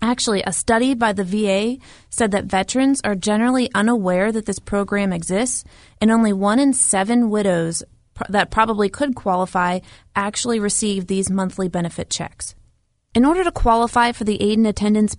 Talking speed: 160 wpm